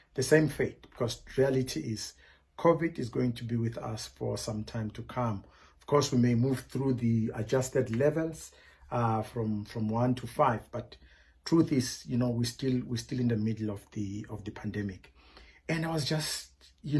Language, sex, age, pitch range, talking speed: English, male, 50-69, 115-145 Hz, 195 wpm